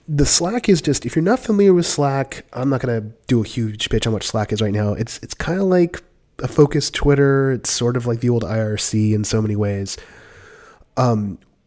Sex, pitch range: male, 110-140 Hz